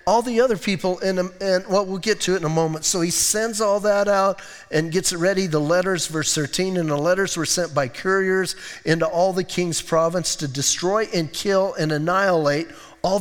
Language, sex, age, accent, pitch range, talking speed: English, male, 40-59, American, 175-225 Hz, 220 wpm